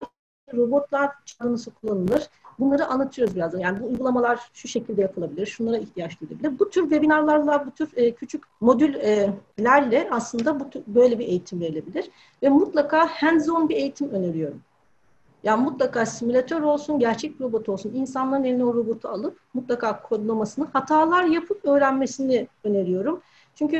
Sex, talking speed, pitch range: female, 130 wpm, 235-310 Hz